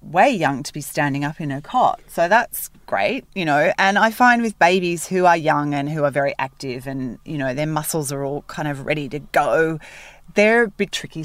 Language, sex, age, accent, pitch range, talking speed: English, female, 30-49, Australian, 145-200 Hz, 230 wpm